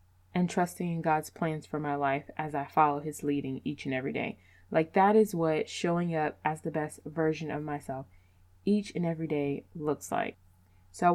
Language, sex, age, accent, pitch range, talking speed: English, female, 20-39, American, 140-170 Hz, 200 wpm